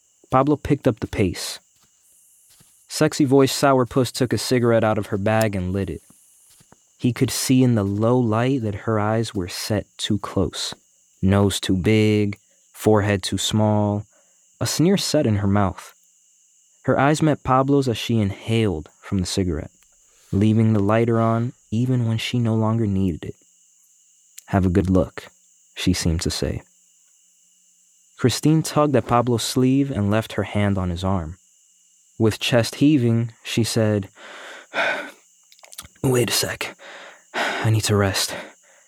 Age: 20-39